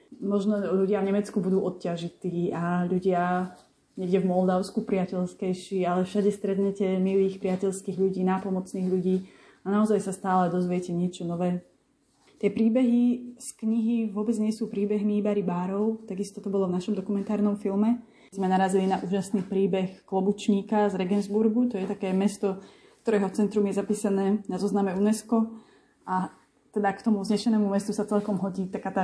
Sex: female